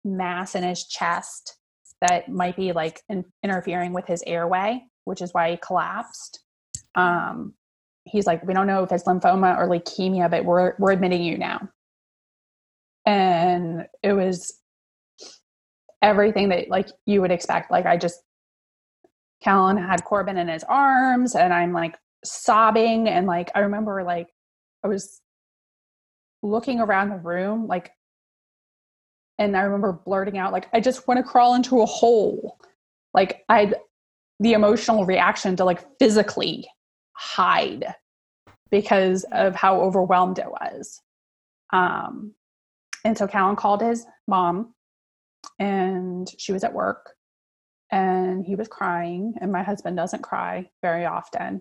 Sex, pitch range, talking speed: female, 180-210 Hz, 140 wpm